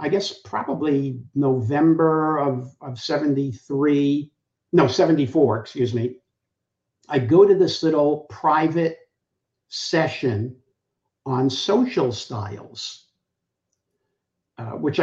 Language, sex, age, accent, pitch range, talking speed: English, male, 60-79, American, 125-155 Hz, 90 wpm